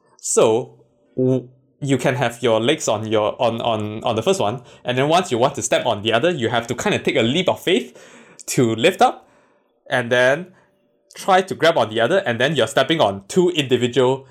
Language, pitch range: English, 120-175 Hz